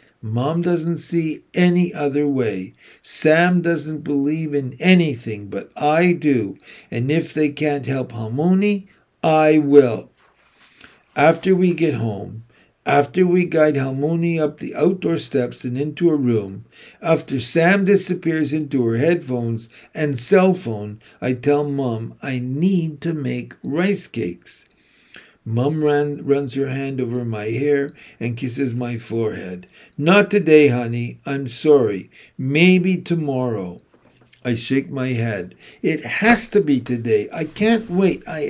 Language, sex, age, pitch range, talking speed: English, male, 60-79, 125-175 Hz, 135 wpm